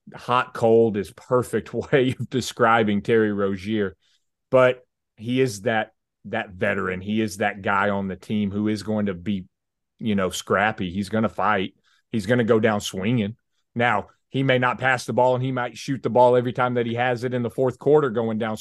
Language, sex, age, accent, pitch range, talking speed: English, male, 30-49, American, 100-120 Hz, 210 wpm